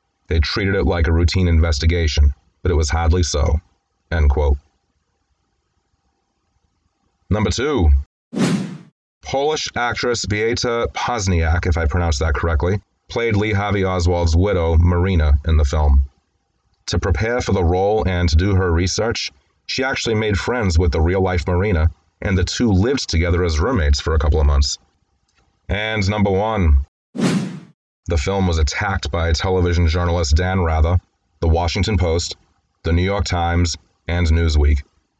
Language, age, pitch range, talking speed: English, 30-49, 80-90 Hz, 145 wpm